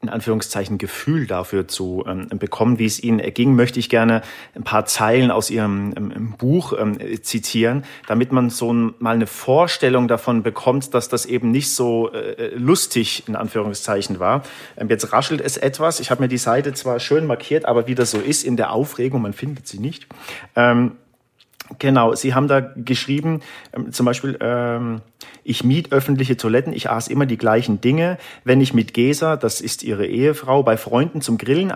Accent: German